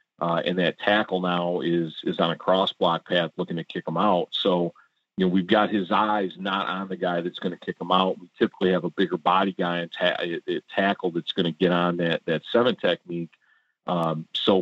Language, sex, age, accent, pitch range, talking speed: English, male, 40-59, American, 85-100 Hz, 230 wpm